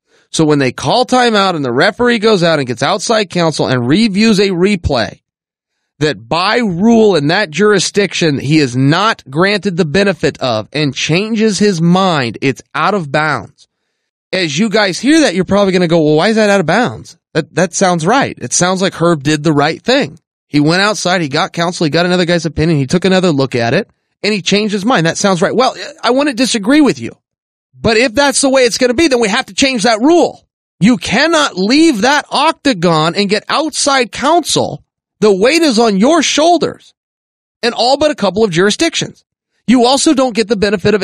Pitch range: 170-260 Hz